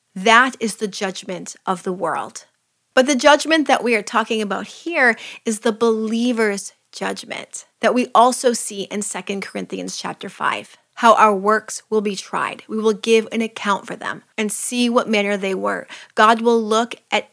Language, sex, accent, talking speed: English, female, American, 180 wpm